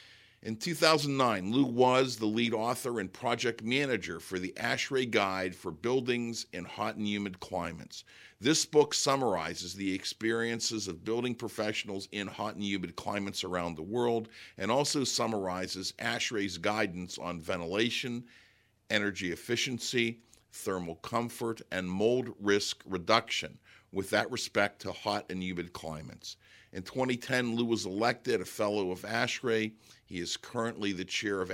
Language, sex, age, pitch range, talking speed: English, male, 50-69, 95-115 Hz, 145 wpm